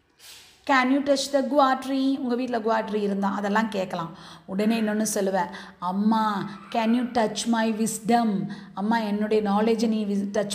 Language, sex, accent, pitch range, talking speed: Tamil, female, native, 205-275 Hz, 150 wpm